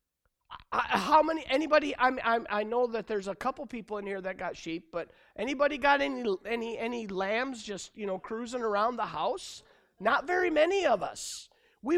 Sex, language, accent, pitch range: male, English, American, 175-235 Hz